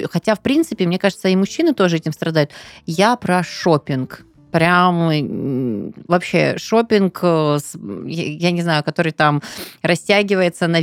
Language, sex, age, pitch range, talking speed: Russian, female, 20-39, 155-205 Hz, 130 wpm